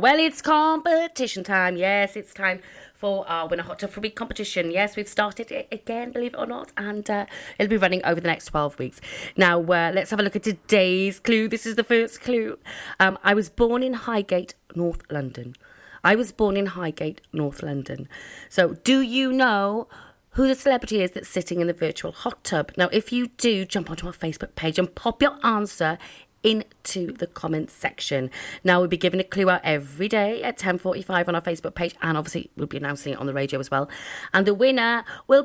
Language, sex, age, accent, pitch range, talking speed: English, female, 30-49, British, 165-225 Hz, 210 wpm